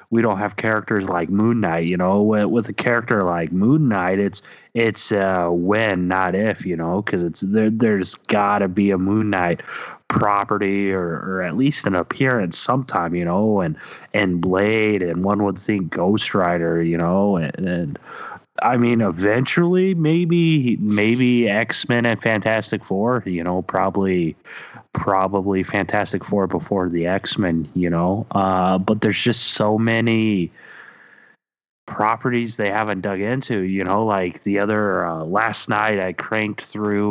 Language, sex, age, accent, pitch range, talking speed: English, male, 30-49, American, 90-110 Hz, 160 wpm